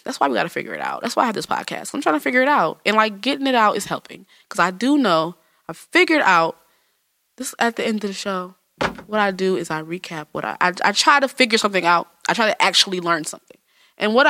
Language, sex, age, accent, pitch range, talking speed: English, female, 20-39, American, 180-290 Hz, 270 wpm